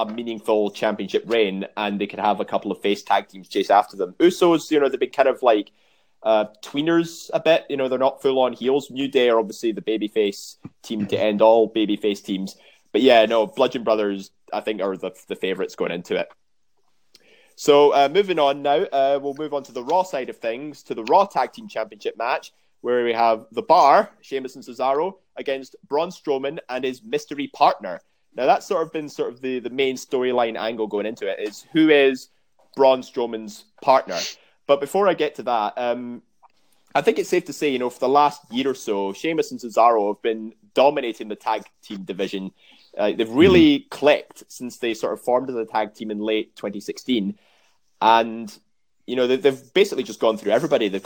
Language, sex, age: English, male, 20-39